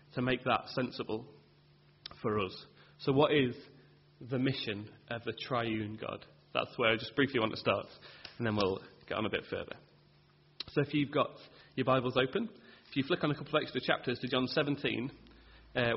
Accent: British